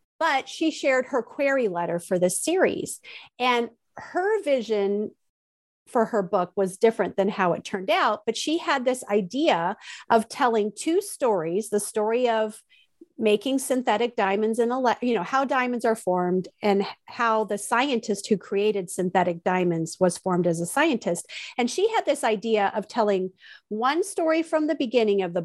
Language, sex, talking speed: English, female, 170 wpm